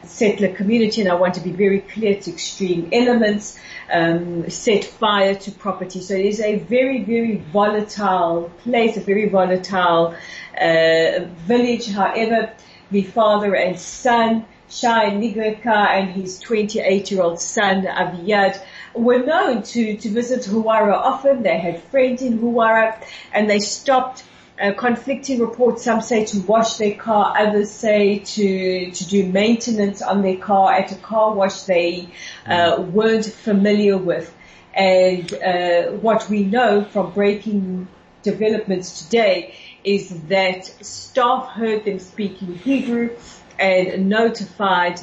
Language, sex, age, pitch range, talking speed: English, female, 40-59, 185-220 Hz, 135 wpm